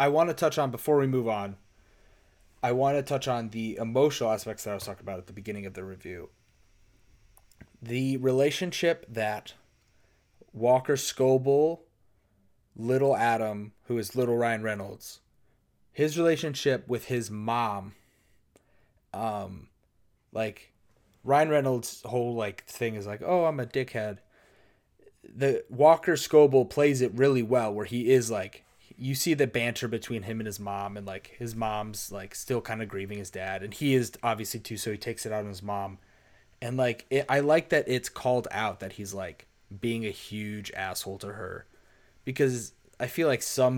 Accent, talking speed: American, 170 wpm